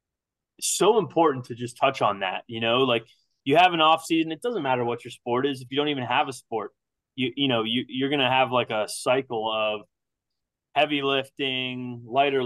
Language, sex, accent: English, male, American